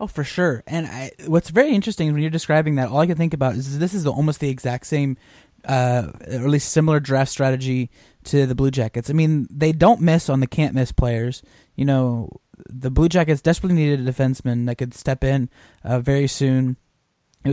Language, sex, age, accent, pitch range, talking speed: English, male, 20-39, American, 125-145 Hz, 210 wpm